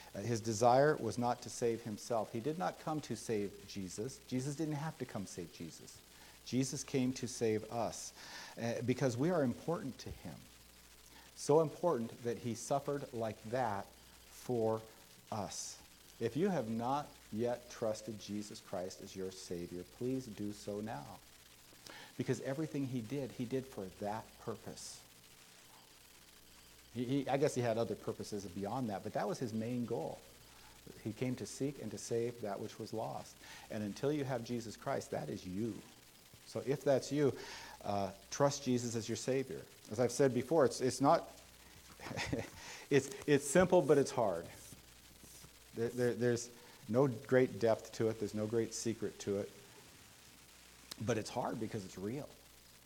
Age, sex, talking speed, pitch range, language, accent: 50-69, male, 165 wpm, 100-130 Hz, English, American